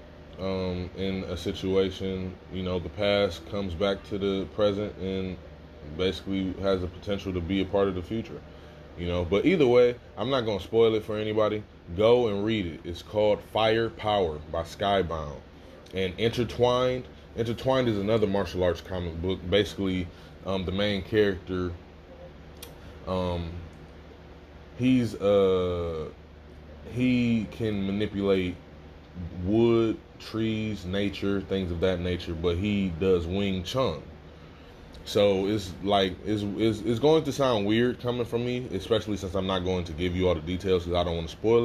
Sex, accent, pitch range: male, American, 85-105 Hz